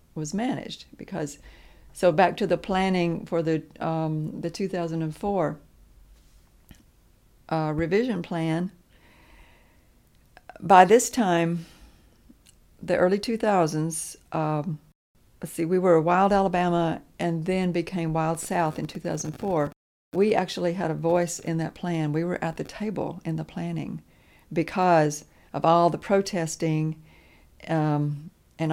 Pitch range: 155-180 Hz